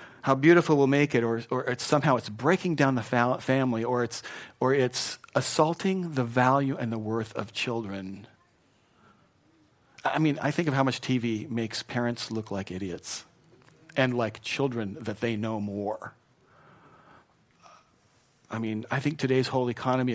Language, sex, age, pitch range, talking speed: English, male, 40-59, 110-135 Hz, 150 wpm